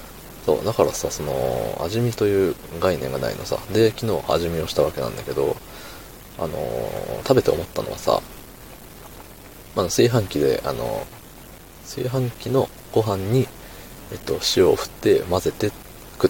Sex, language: male, Japanese